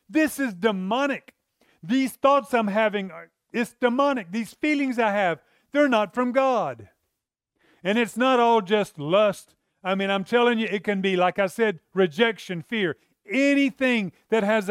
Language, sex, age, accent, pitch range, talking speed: English, male, 40-59, American, 190-245 Hz, 160 wpm